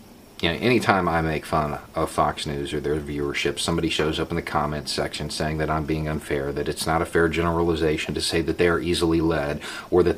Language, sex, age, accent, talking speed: English, male, 40-59, American, 220 wpm